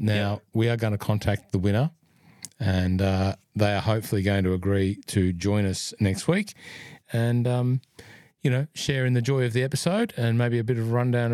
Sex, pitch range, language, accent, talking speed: male, 100-130 Hz, English, Australian, 205 wpm